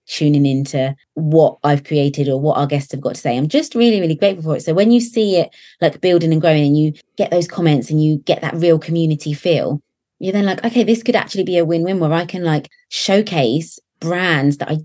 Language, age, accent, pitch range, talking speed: English, 20-39, British, 140-170 Hz, 240 wpm